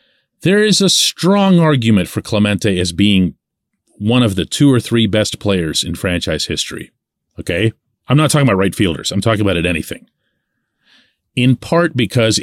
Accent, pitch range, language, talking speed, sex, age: American, 90-130 Hz, English, 170 wpm, male, 40-59